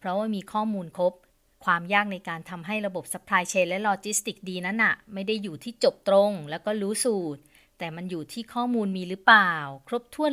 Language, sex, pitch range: Thai, female, 175-230 Hz